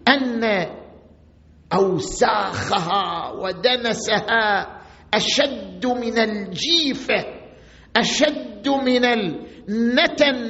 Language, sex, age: Arabic, male, 50-69